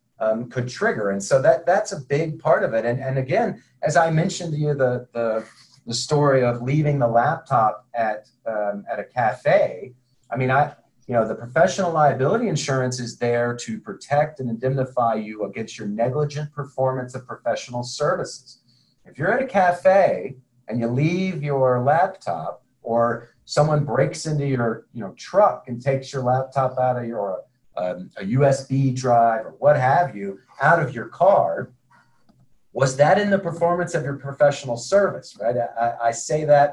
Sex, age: male, 40-59